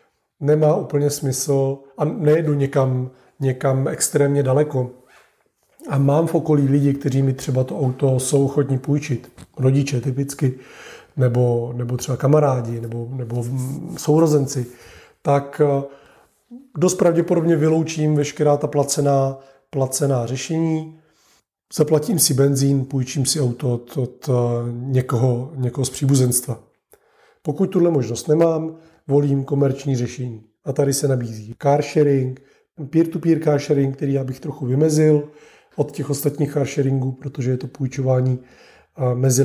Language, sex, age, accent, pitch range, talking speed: Czech, male, 30-49, native, 130-155 Hz, 125 wpm